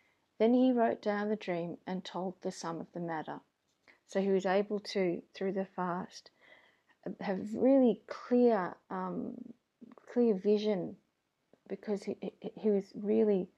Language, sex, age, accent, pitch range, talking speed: English, female, 40-59, Australian, 175-205 Hz, 140 wpm